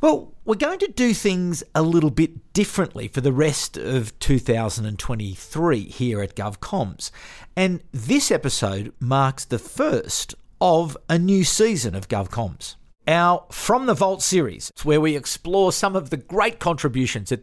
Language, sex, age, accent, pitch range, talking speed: English, male, 50-69, Australian, 130-195 Hz, 155 wpm